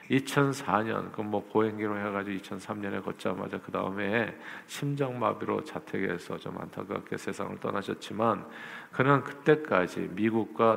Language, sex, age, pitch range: Korean, male, 50-69, 110-155 Hz